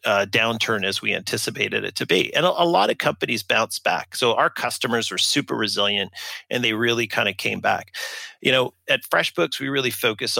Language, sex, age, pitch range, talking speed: English, male, 40-59, 110-125 Hz, 210 wpm